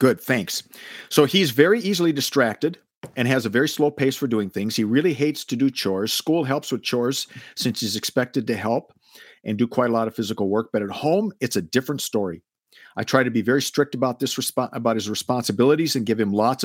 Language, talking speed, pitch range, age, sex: English, 225 wpm, 110-145 Hz, 50-69, male